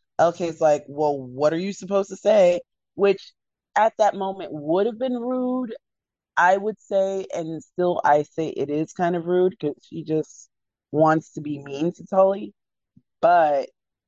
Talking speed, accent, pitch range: 165 wpm, American, 145-190 Hz